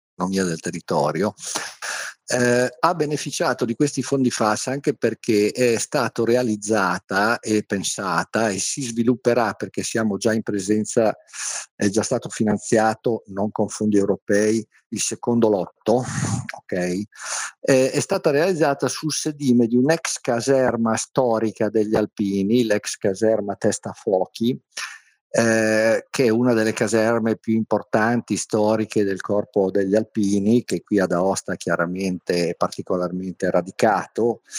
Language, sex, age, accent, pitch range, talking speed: Italian, male, 50-69, native, 105-120 Hz, 125 wpm